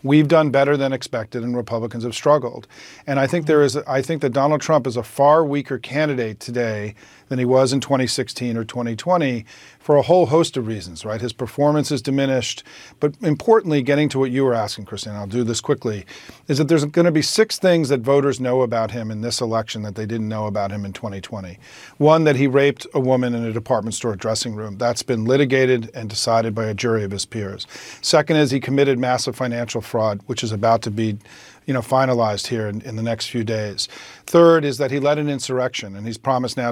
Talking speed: 220 wpm